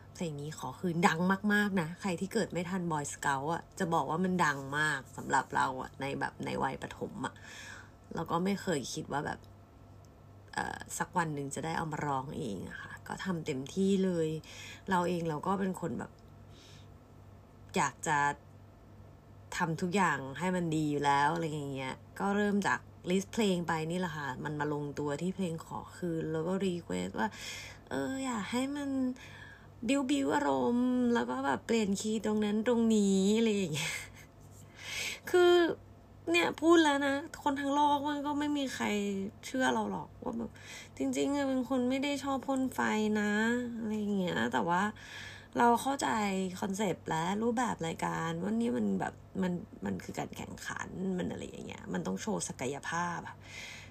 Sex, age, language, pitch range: female, 20-39, Thai, 145-220 Hz